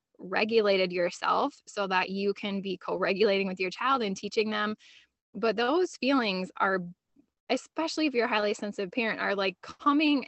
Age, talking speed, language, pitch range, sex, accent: 20-39, 165 wpm, English, 190-230 Hz, female, American